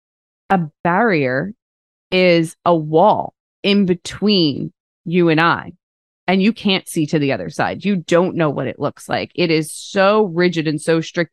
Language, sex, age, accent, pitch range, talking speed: English, female, 20-39, American, 150-180 Hz, 170 wpm